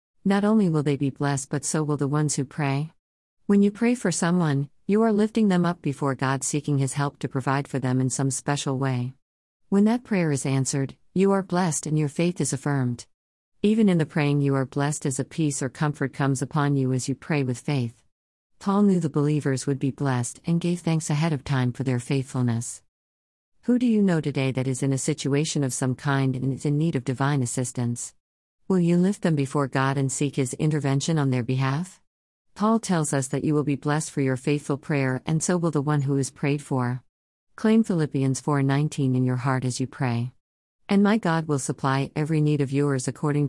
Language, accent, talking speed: English, American, 220 wpm